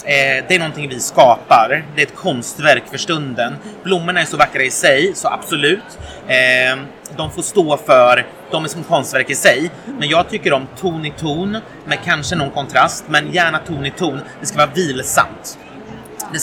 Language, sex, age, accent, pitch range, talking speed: English, male, 30-49, Swedish, 135-175 Hz, 190 wpm